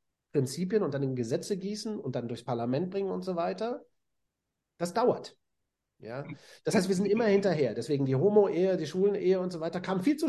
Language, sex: German, male